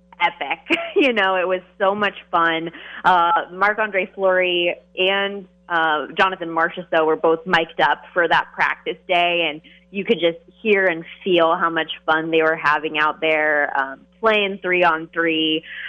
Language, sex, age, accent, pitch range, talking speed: English, female, 20-39, American, 165-185 Hz, 165 wpm